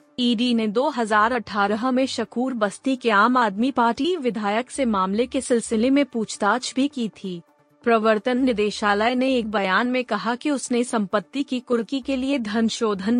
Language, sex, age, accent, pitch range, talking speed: Hindi, female, 20-39, native, 205-250 Hz, 165 wpm